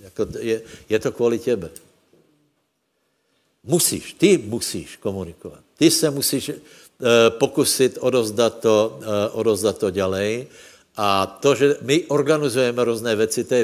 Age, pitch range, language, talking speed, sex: 60-79, 105-120 Hz, Slovak, 130 wpm, male